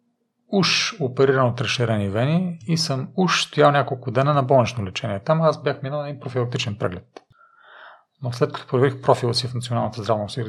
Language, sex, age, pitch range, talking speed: Bulgarian, male, 40-59, 110-140 Hz, 175 wpm